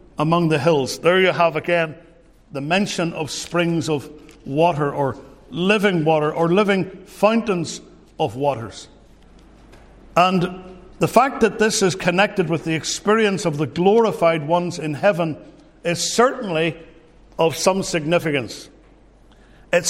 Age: 60-79